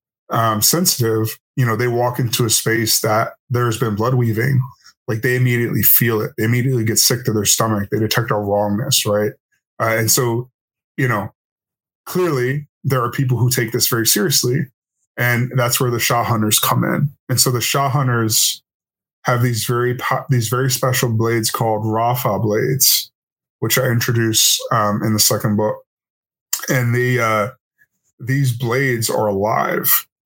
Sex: male